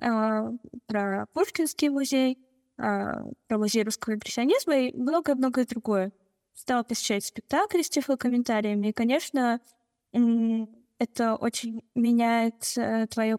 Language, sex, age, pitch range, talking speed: Russian, female, 10-29, 220-255 Hz, 100 wpm